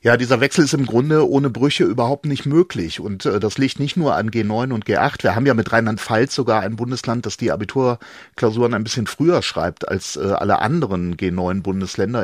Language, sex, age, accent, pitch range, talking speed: German, male, 40-59, German, 105-125 Hz, 200 wpm